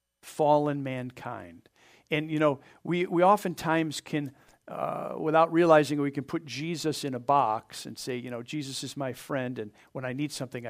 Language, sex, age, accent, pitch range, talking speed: English, male, 50-69, American, 135-170 Hz, 180 wpm